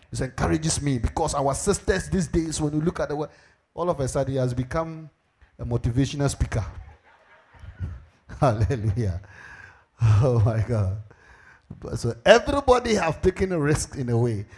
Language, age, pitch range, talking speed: English, 50-69, 110-140 Hz, 150 wpm